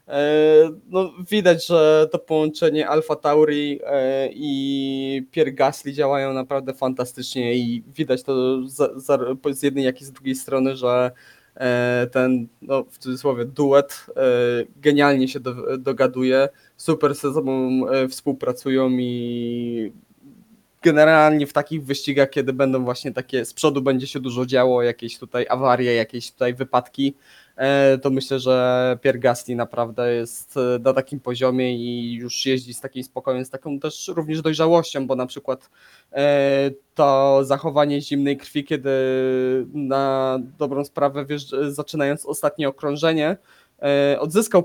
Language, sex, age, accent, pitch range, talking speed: Polish, male, 20-39, native, 130-150 Hz, 125 wpm